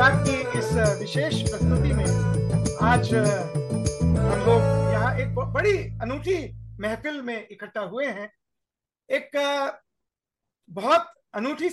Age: 50-69